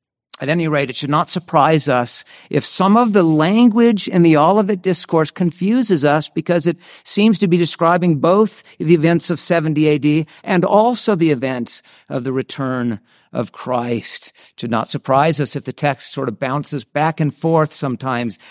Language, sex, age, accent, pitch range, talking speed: English, male, 50-69, American, 130-175 Hz, 180 wpm